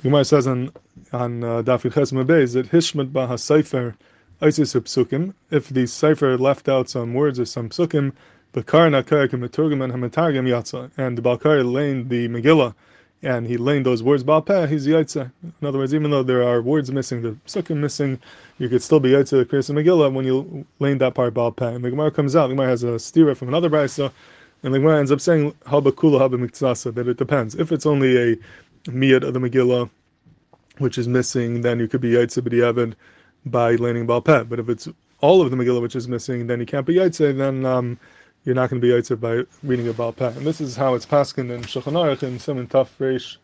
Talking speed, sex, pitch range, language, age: 190 wpm, male, 125-150 Hz, English, 20-39